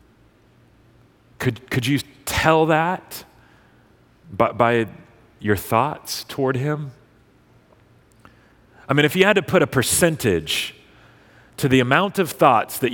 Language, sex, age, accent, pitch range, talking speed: English, male, 40-59, American, 105-135 Hz, 120 wpm